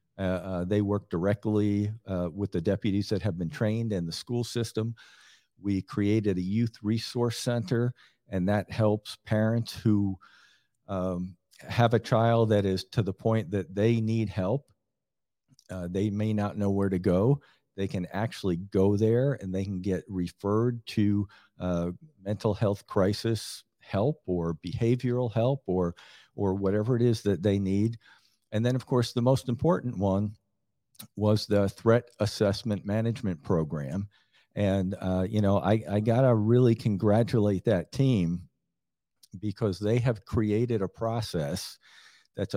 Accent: American